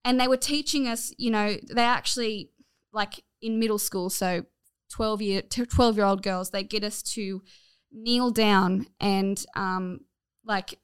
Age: 10-29